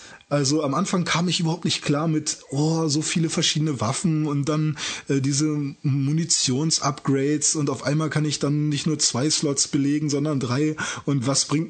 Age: 20-39